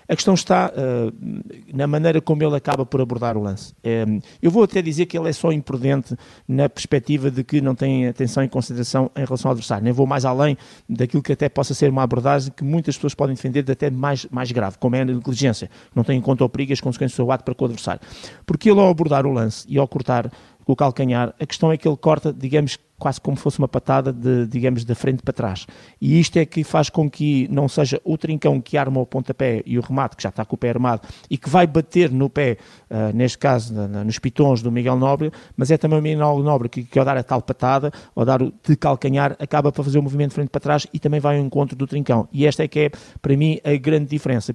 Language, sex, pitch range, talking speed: Portuguese, male, 125-150 Hz, 255 wpm